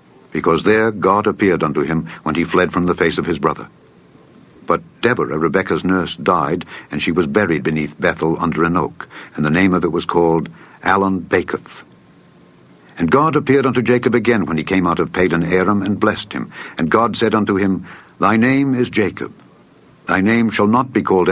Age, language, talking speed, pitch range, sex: 60-79, English, 190 wpm, 90-115 Hz, male